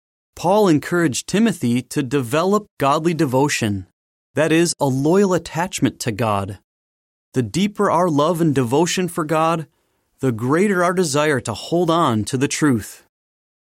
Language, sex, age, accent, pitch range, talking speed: English, male, 30-49, American, 115-170 Hz, 140 wpm